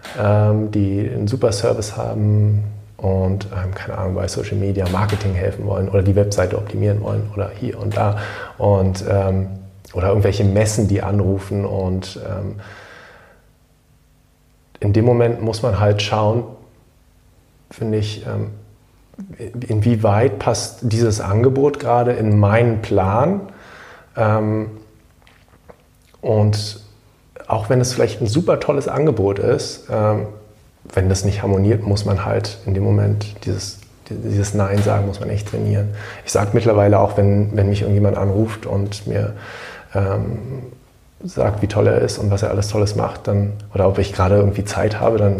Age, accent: 30-49, German